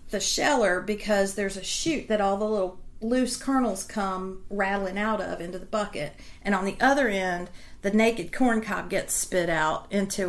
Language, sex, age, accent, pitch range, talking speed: English, female, 40-59, American, 185-230 Hz, 185 wpm